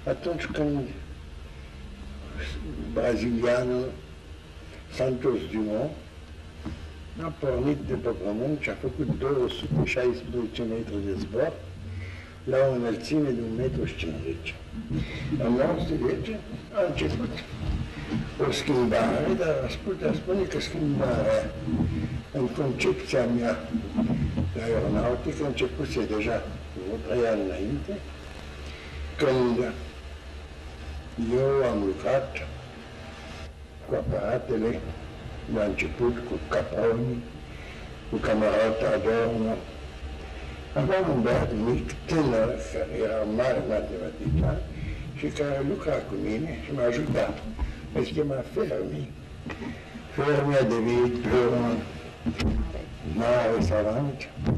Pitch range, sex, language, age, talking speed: 75-115 Hz, male, Romanian, 60-79, 90 wpm